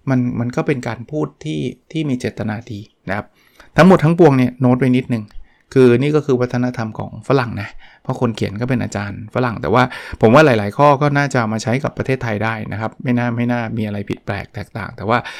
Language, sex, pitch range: Thai, male, 110-130 Hz